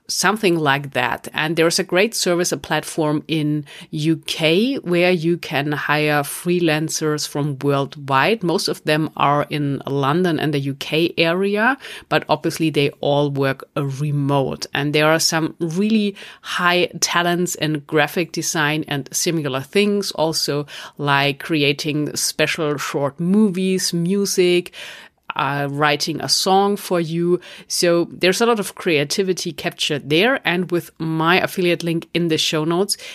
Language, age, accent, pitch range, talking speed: English, 30-49, German, 150-175 Hz, 145 wpm